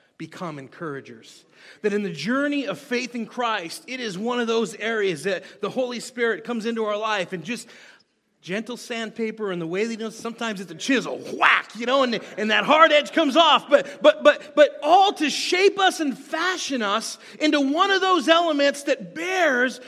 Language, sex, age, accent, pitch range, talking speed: English, male, 30-49, American, 235-320 Hz, 195 wpm